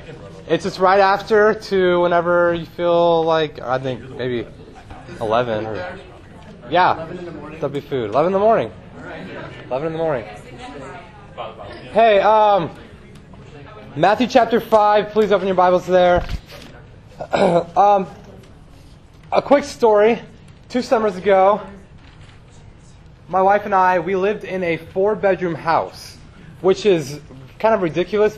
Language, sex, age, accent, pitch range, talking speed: English, male, 20-39, American, 135-185 Hz, 125 wpm